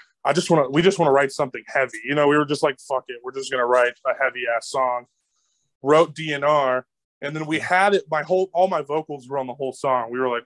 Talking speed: 270 wpm